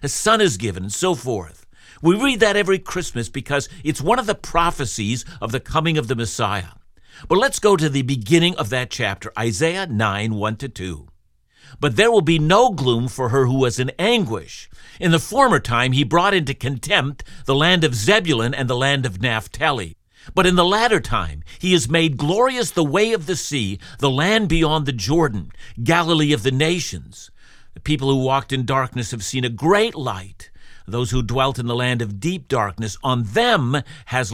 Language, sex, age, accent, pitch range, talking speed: English, male, 50-69, American, 120-165 Hz, 190 wpm